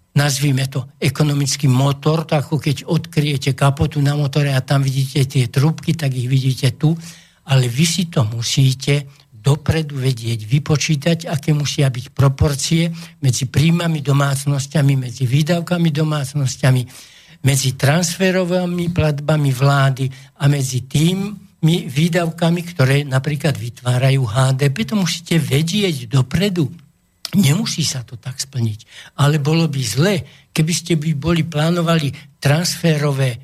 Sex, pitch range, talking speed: male, 130-160 Hz, 125 wpm